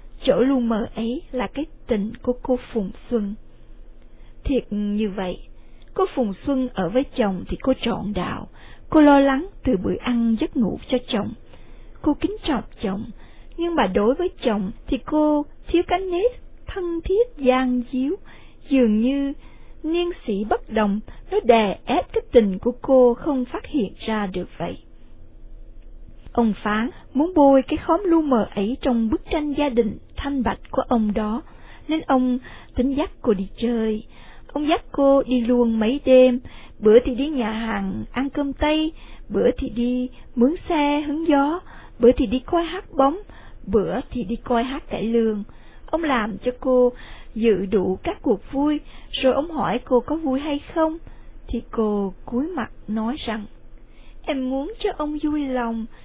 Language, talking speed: Vietnamese, 170 wpm